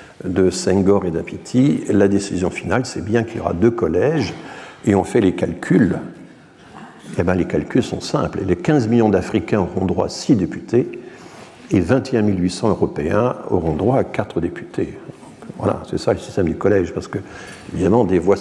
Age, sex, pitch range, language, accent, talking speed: 60-79, male, 90-110 Hz, French, French, 185 wpm